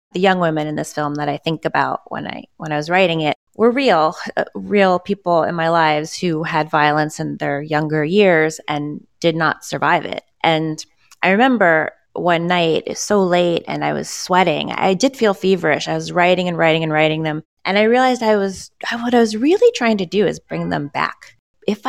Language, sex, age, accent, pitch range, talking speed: English, female, 20-39, American, 160-205 Hz, 215 wpm